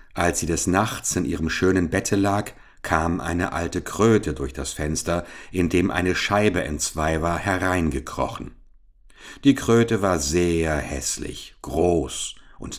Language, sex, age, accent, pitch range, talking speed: English, male, 60-79, German, 80-115 Hz, 145 wpm